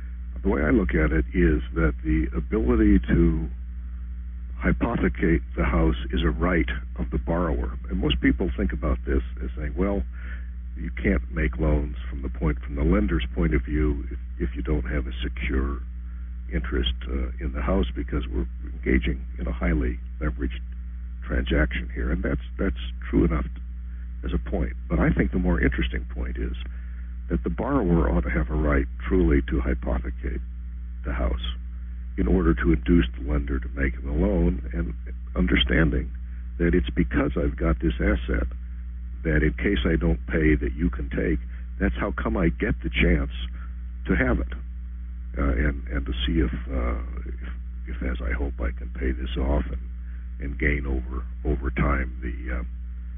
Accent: American